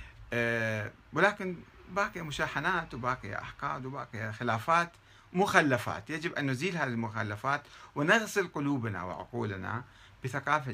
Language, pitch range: Arabic, 105-140 Hz